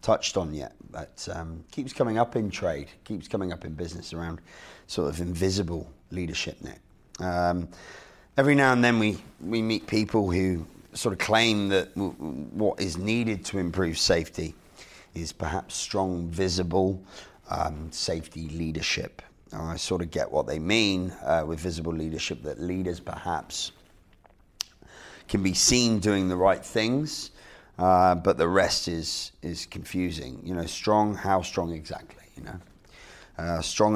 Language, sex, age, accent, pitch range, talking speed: English, male, 30-49, British, 85-100 Hz, 155 wpm